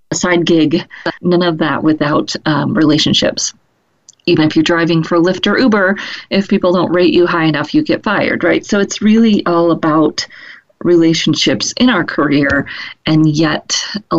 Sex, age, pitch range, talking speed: female, 30-49, 155-205 Hz, 170 wpm